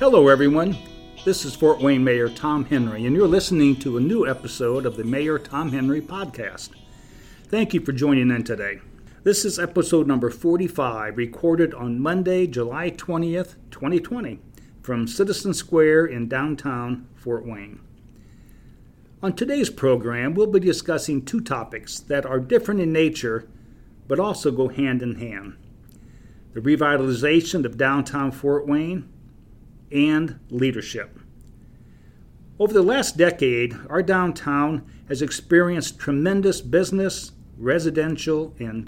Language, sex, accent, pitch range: English, male, American, 125-165 Hz